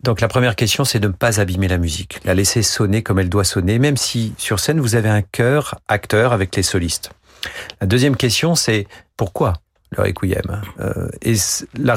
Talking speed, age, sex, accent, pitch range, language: 195 wpm, 40-59, male, French, 100-120 Hz, French